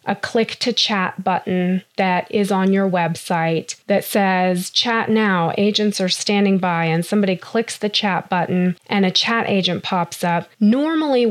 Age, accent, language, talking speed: 20-39, American, English, 165 wpm